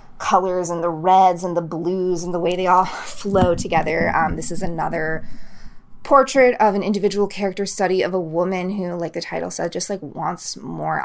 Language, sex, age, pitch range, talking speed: English, female, 20-39, 155-195 Hz, 195 wpm